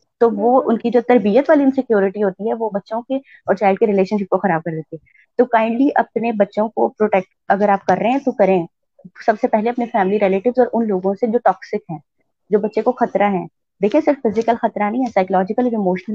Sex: female